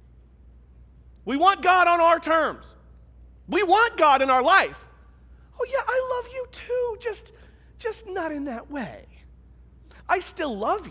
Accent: American